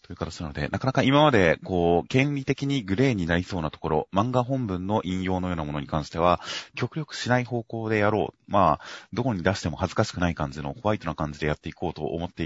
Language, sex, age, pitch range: Japanese, male, 30-49, 75-105 Hz